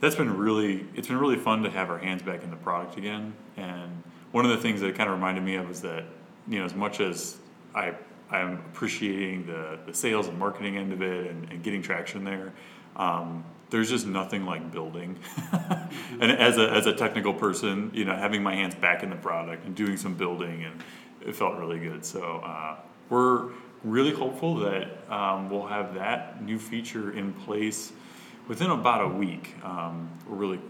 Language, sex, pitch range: English, male, 85-105 Hz